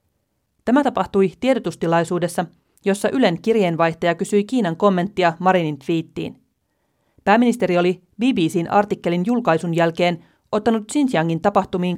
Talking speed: 100 wpm